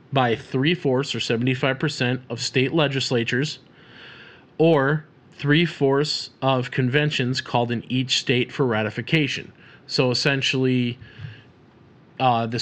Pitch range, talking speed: 115-135 Hz, 115 wpm